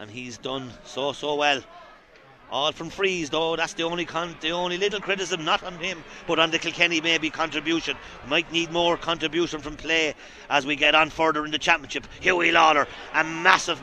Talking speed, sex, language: 195 wpm, male, English